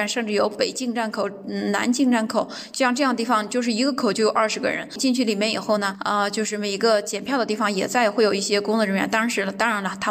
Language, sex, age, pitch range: Chinese, female, 10-29, 195-235 Hz